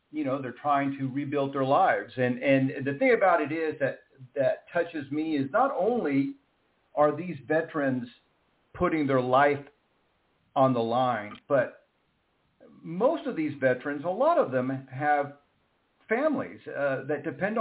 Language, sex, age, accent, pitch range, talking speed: English, male, 50-69, American, 135-175 Hz, 155 wpm